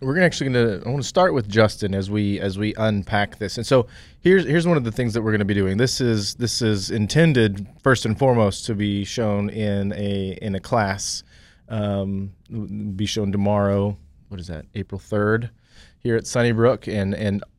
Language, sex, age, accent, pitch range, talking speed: English, male, 30-49, American, 100-115 Hz, 205 wpm